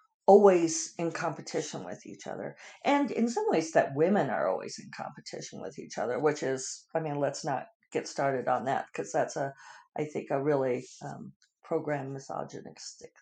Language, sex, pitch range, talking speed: English, female, 145-180 Hz, 175 wpm